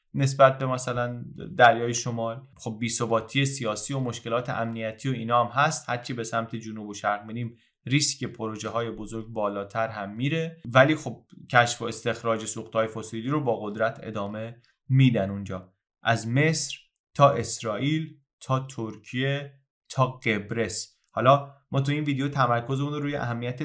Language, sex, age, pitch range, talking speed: Persian, male, 30-49, 115-140 Hz, 145 wpm